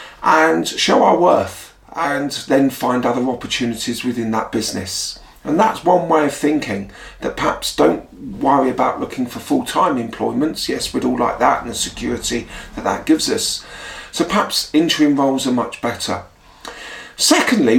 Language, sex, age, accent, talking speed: English, male, 40-59, British, 160 wpm